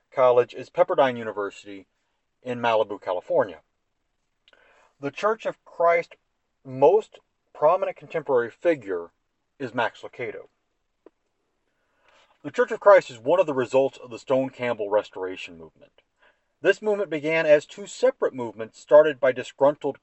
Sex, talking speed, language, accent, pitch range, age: male, 125 wpm, English, American, 125-175 Hz, 40-59